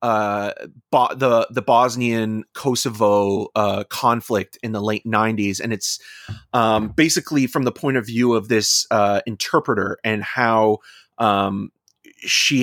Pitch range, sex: 100-120 Hz, male